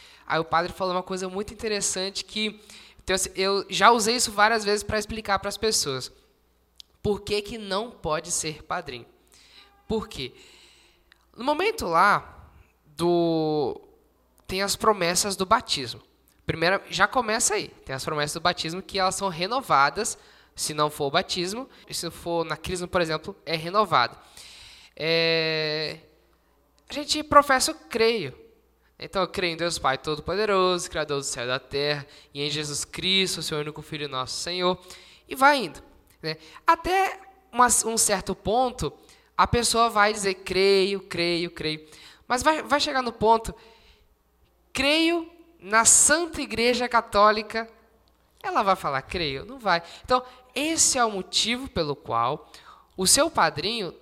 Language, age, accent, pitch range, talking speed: Portuguese, 10-29, Brazilian, 155-225 Hz, 150 wpm